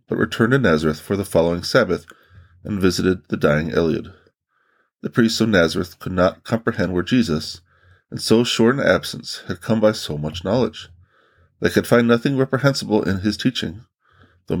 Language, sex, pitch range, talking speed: English, male, 85-110 Hz, 175 wpm